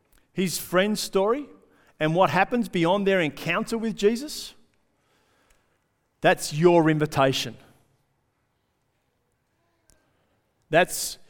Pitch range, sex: 150-190 Hz, male